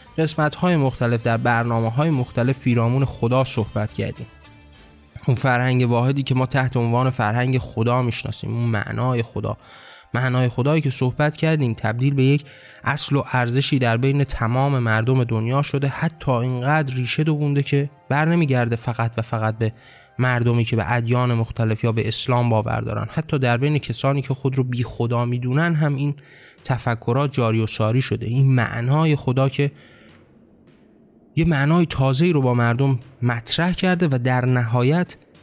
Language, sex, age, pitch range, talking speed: Persian, male, 20-39, 120-145 Hz, 160 wpm